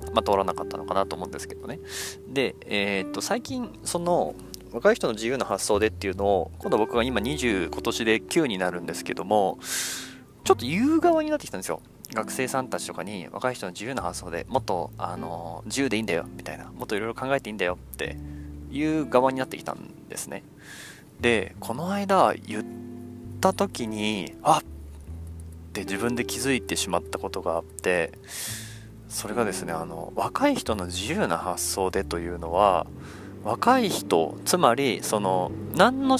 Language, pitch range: Japanese, 90-135 Hz